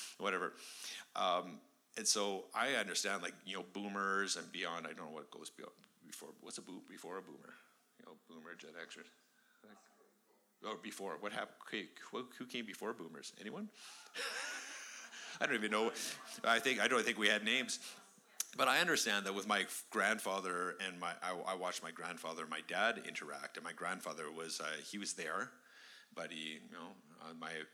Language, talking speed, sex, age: English, 180 wpm, male, 50-69